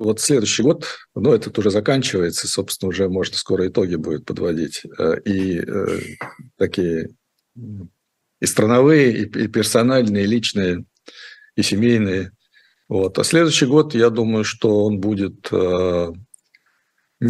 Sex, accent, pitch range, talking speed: male, native, 100-120 Hz, 130 wpm